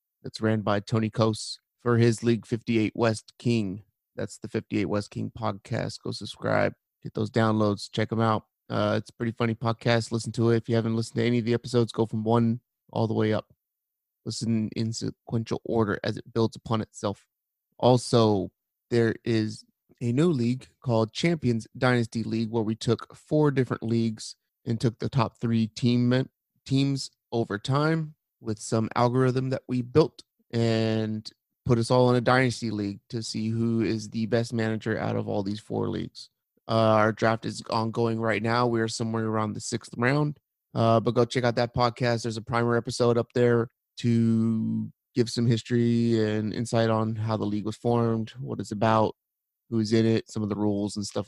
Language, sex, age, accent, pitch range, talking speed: English, male, 30-49, American, 110-120 Hz, 190 wpm